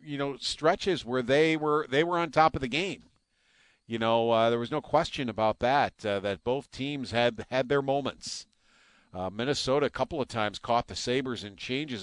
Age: 50-69